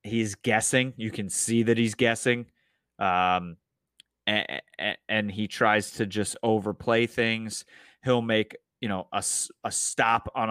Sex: male